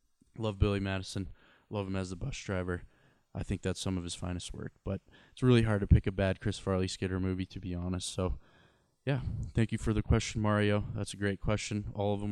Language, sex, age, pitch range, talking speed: English, male, 20-39, 95-110 Hz, 230 wpm